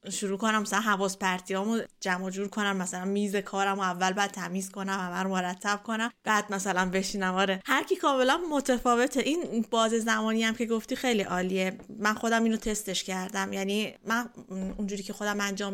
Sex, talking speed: female, 175 wpm